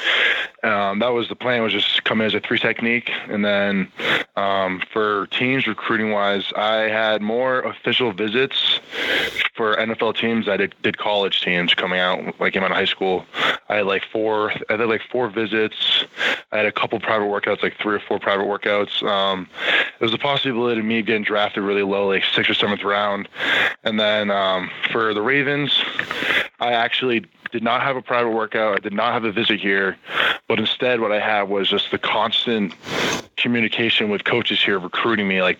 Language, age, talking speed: English, 20-39, 190 wpm